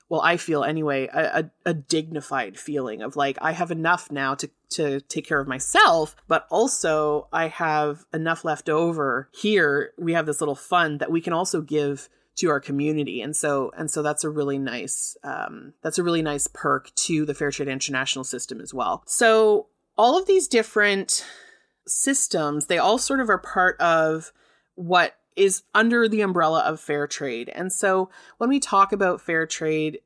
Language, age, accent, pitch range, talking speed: English, 30-49, American, 150-185 Hz, 185 wpm